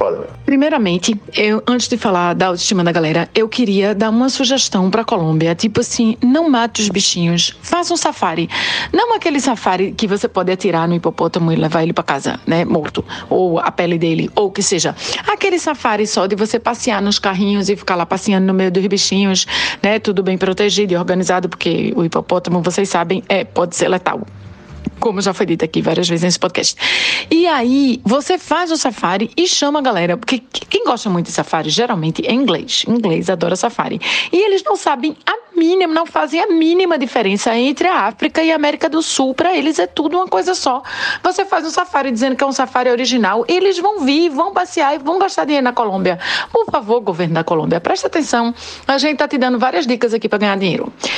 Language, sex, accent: Portuguese, female, Brazilian